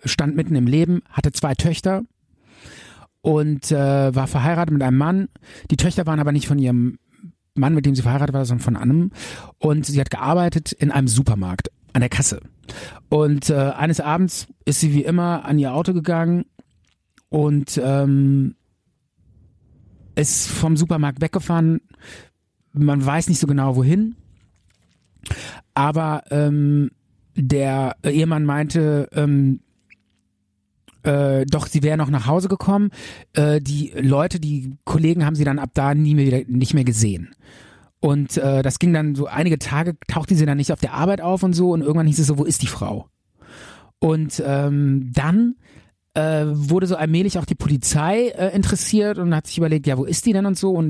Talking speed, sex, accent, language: 170 wpm, male, German, German